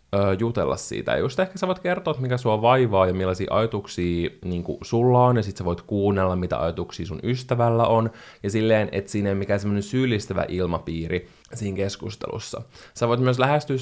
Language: Finnish